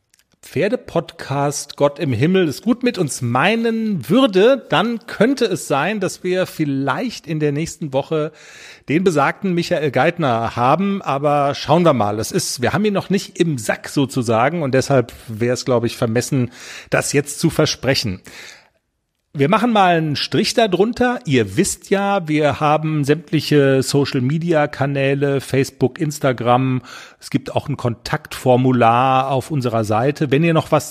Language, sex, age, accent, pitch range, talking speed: German, male, 40-59, German, 130-170 Hz, 150 wpm